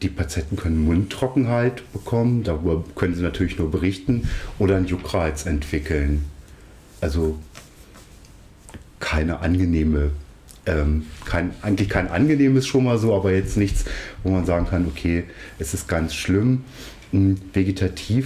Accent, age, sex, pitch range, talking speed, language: German, 40-59, male, 85-100 Hz, 125 wpm, German